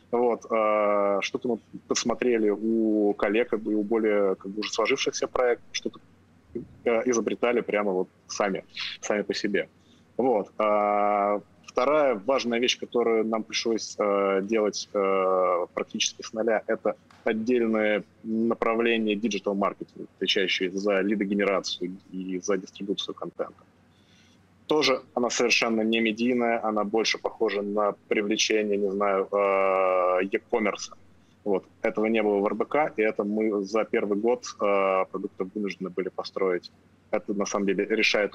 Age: 20-39